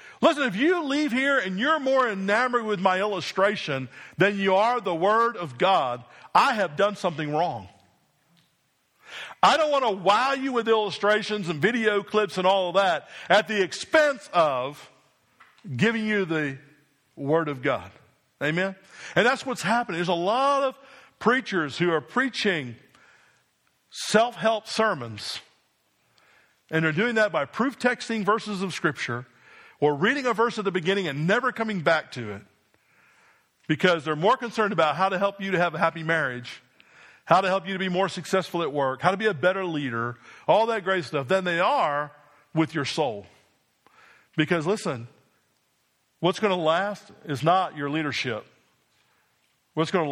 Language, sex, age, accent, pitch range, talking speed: English, male, 50-69, American, 150-215 Hz, 165 wpm